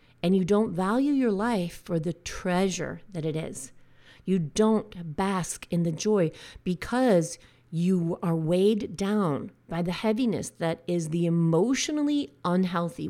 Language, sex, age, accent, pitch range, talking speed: English, female, 40-59, American, 160-210 Hz, 140 wpm